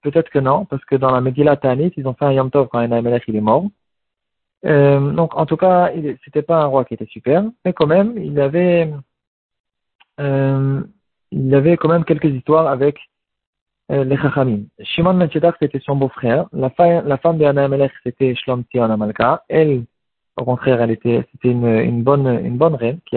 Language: French